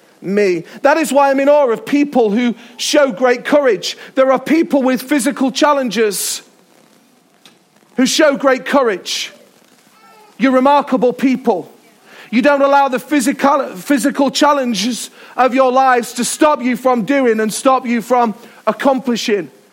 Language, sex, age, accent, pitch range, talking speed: English, male, 40-59, British, 230-280 Hz, 140 wpm